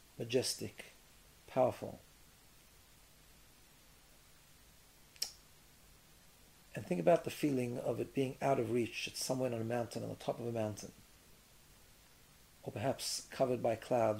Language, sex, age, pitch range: English, male, 50-69, 105-130 Hz